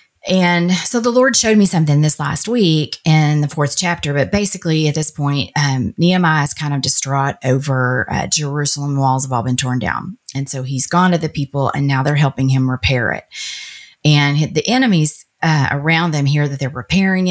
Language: English